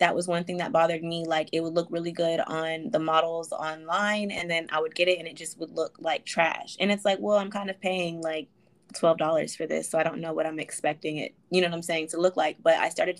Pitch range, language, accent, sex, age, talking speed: 160-180 Hz, English, American, female, 20-39, 275 wpm